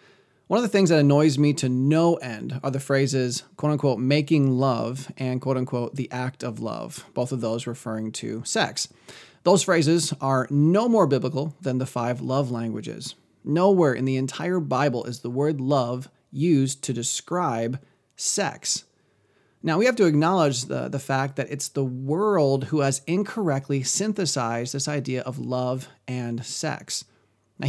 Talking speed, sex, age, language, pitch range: 165 wpm, male, 30-49, English, 130-165 Hz